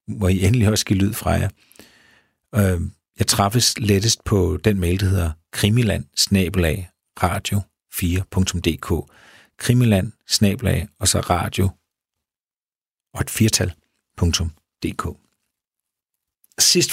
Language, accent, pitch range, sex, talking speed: Danish, native, 90-115 Hz, male, 95 wpm